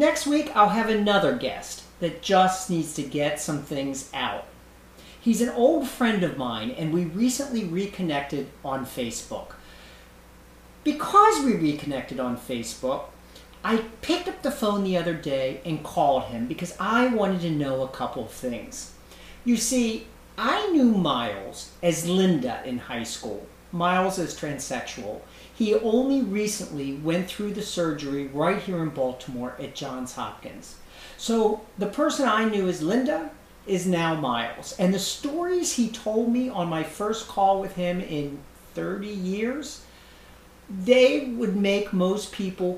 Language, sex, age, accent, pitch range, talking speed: English, male, 40-59, American, 145-225 Hz, 150 wpm